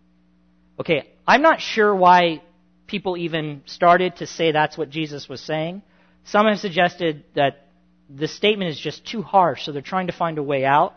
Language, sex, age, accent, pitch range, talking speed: English, male, 40-59, American, 140-210 Hz, 180 wpm